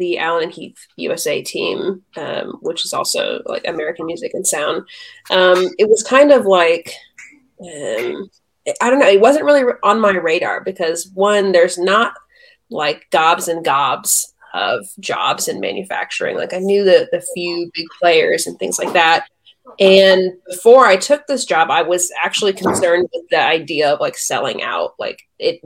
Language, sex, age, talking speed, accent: English, female, 30-49, 175 wpm, American